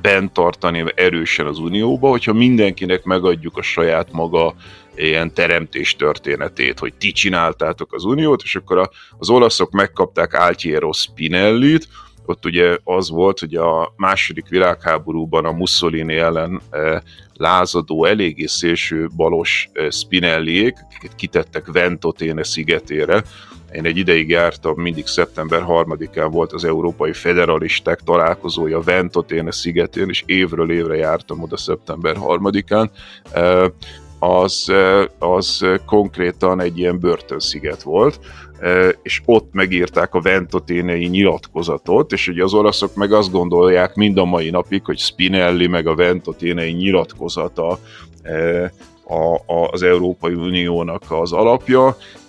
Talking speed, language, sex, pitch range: 115 wpm, Hungarian, male, 85-95 Hz